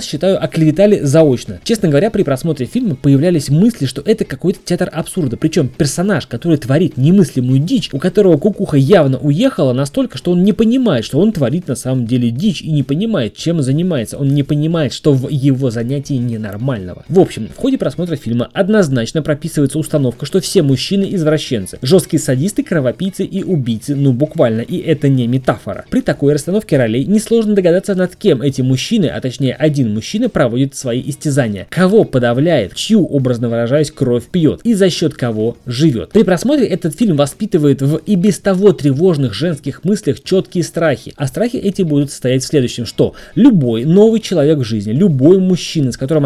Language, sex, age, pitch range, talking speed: Russian, male, 20-39, 135-190 Hz, 175 wpm